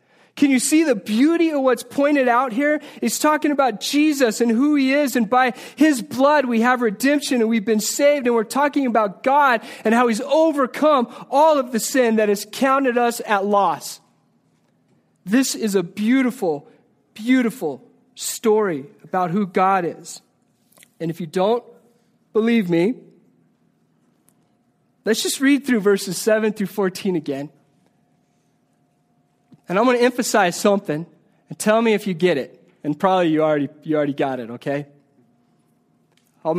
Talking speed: 155 wpm